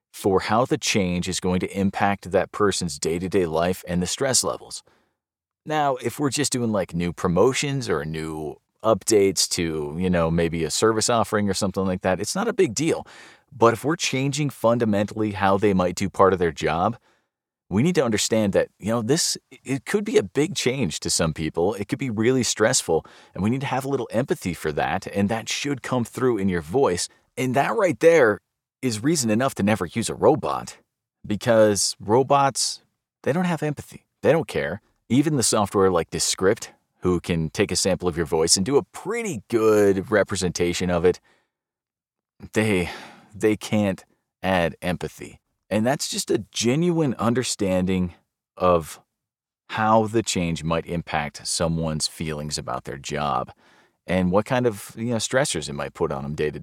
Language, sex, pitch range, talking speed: English, male, 90-125 Hz, 185 wpm